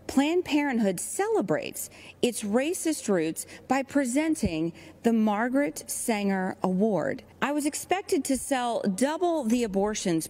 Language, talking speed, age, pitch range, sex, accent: English, 115 wpm, 40-59, 175-260 Hz, female, American